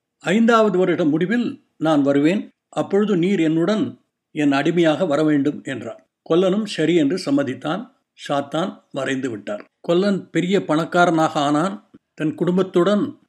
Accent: native